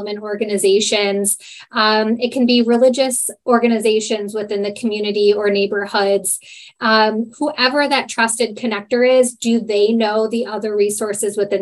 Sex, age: female, 10-29